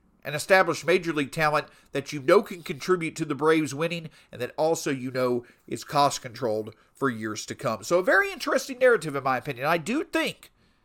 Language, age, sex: English, 50-69, male